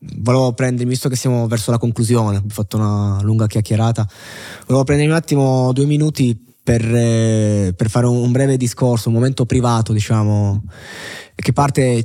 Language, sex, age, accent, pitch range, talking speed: Italian, male, 20-39, native, 110-125 Hz, 160 wpm